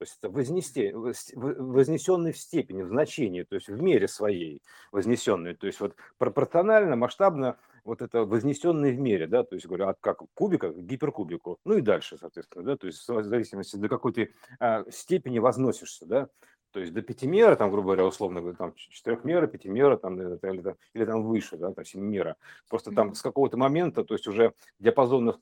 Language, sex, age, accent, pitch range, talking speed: Russian, male, 50-69, native, 100-150 Hz, 175 wpm